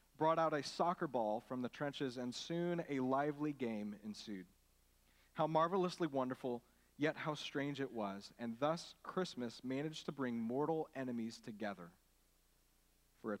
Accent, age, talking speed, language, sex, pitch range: American, 40-59, 150 wpm, English, male, 110-165 Hz